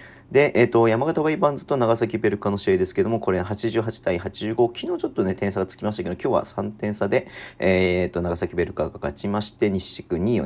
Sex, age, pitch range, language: male, 40-59, 95-120 Hz, Japanese